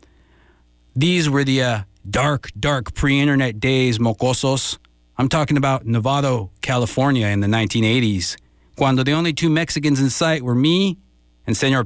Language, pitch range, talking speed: English, 110-145 Hz, 140 wpm